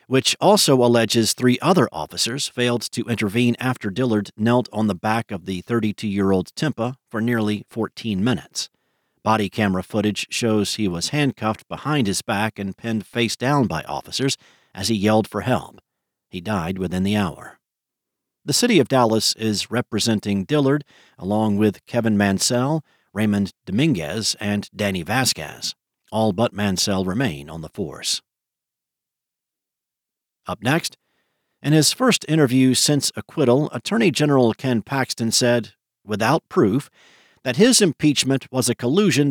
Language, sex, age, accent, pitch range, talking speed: English, male, 50-69, American, 105-135 Hz, 140 wpm